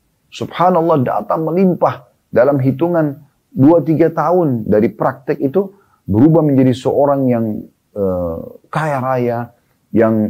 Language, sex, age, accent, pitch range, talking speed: Indonesian, male, 30-49, native, 100-140 Hz, 105 wpm